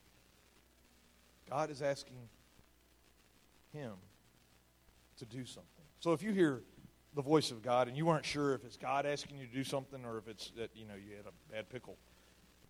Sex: male